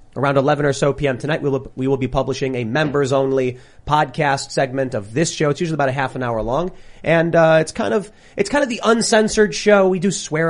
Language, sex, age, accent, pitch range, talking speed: English, male, 30-49, American, 130-180 Hz, 240 wpm